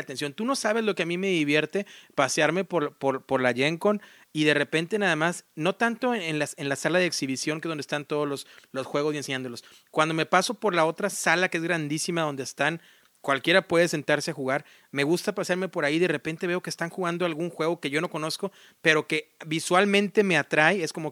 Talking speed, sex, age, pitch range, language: 235 wpm, male, 40-59, 150-195 Hz, Spanish